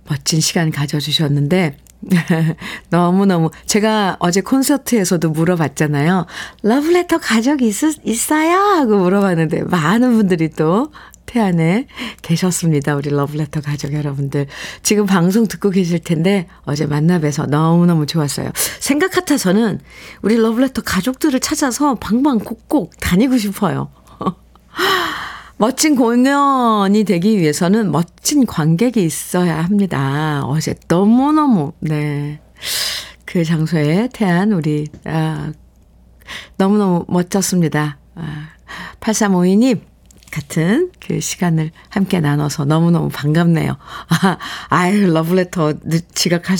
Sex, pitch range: female, 160-230 Hz